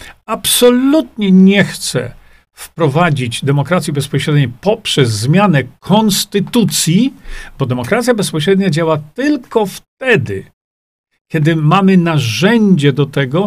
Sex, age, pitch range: male, 50-69, 140-190 Hz